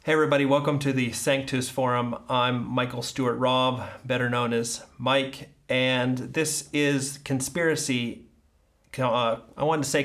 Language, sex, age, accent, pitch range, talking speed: English, male, 30-49, American, 125-150 Hz, 145 wpm